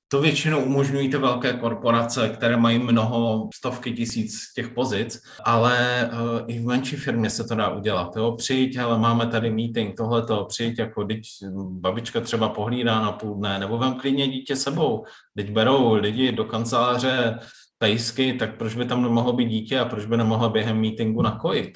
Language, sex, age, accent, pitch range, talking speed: Czech, male, 20-39, native, 110-125 Hz, 175 wpm